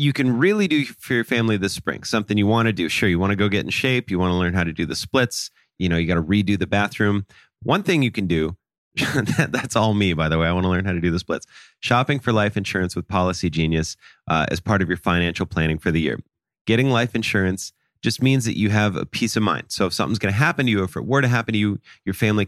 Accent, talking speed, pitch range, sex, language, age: American, 280 wpm, 95-120 Hz, male, English, 30-49